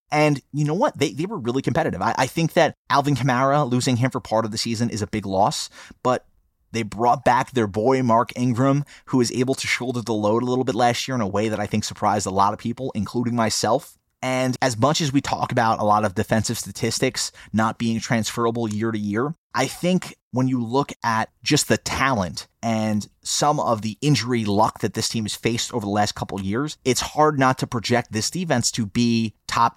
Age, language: 30-49, English